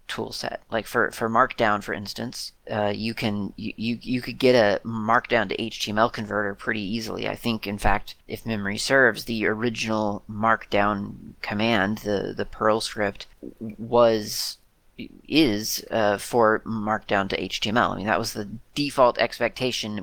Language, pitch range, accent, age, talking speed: English, 105-120 Hz, American, 40-59, 155 wpm